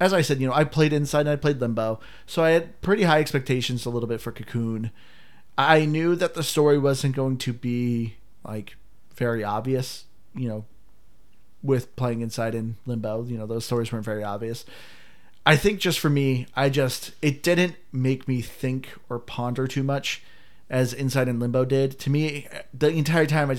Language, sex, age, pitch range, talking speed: English, male, 30-49, 115-145 Hz, 195 wpm